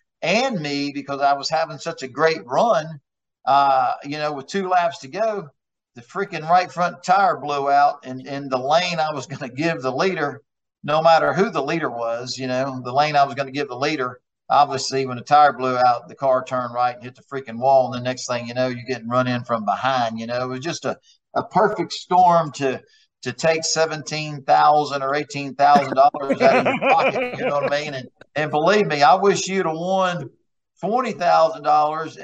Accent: American